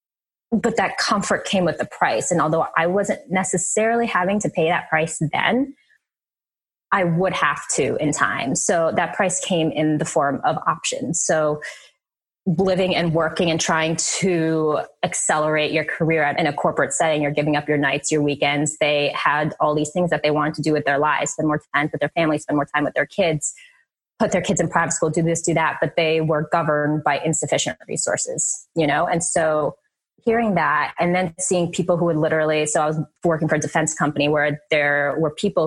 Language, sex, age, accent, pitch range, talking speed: English, female, 20-39, American, 155-190 Hz, 205 wpm